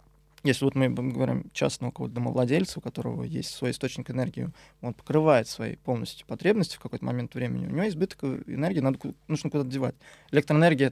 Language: Russian